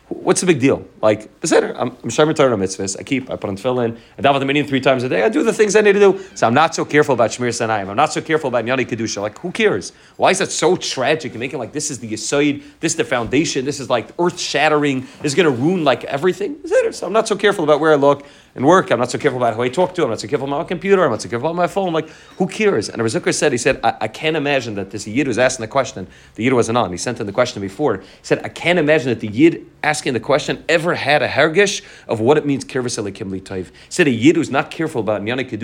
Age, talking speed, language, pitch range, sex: 30-49, 290 wpm, English, 115-155 Hz, male